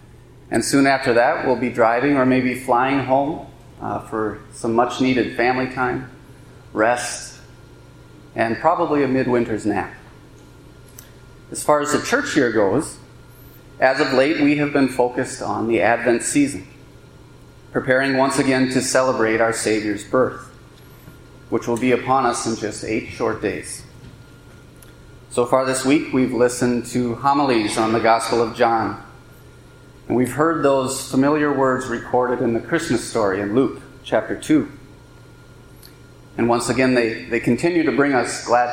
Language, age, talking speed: English, 30-49, 150 wpm